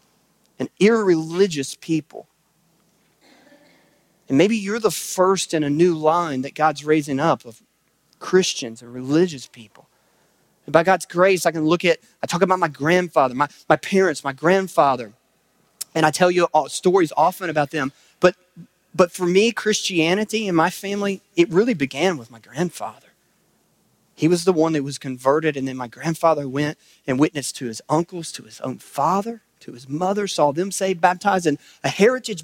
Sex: male